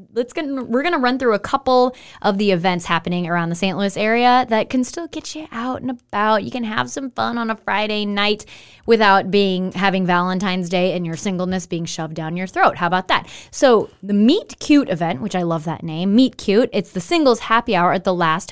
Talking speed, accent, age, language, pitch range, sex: 230 wpm, American, 10-29, English, 175-225 Hz, female